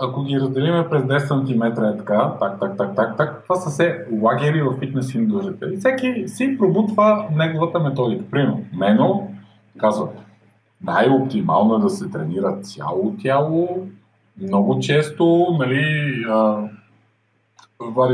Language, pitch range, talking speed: Bulgarian, 110-165 Hz, 135 wpm